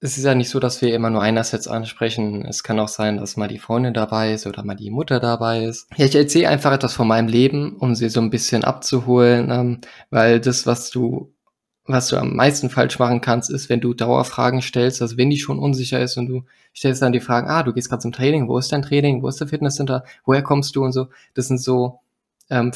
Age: 20-39